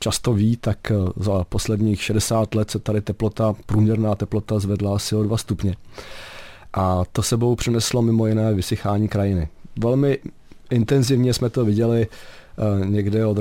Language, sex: Czech, male